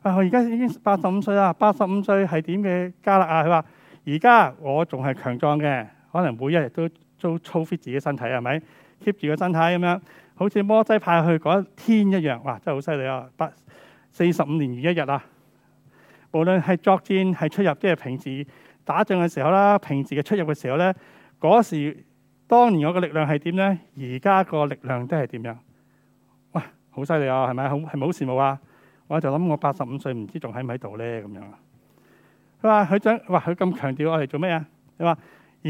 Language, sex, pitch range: Chinese, male, 140-190 Hz